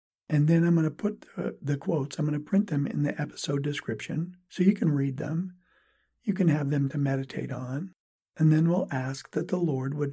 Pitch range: 145-180 Hz